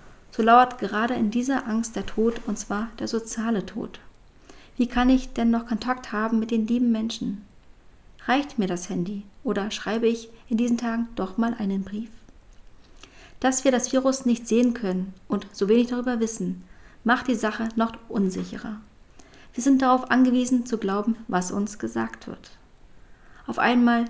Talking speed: 165 wpm